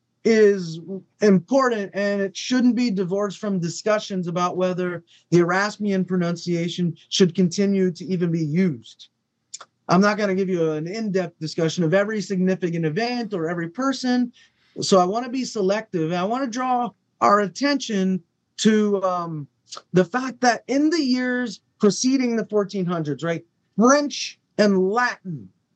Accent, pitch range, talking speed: American, 180-235 Hz, 150 wpm